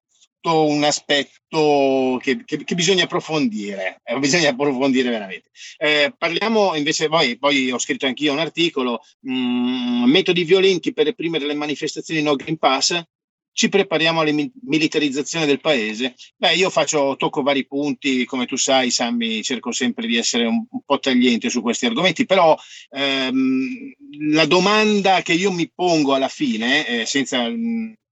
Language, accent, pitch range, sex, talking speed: Italian, native, 145-230 Hz, male, 155 wpm